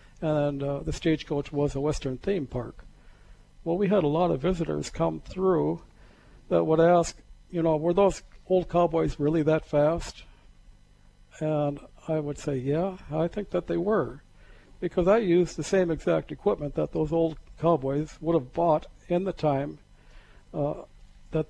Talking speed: 165 wpm